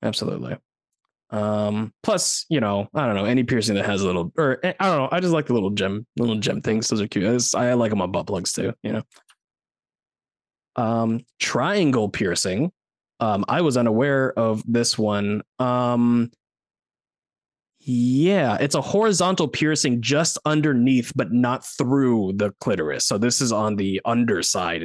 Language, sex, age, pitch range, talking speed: English, male, 20-39, 110-170 Hz, 170 wpm